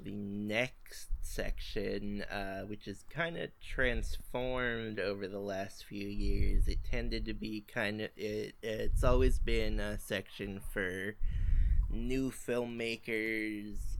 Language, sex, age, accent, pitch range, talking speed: English, male, 20-39, American, 100-120 Hz, 125 wpm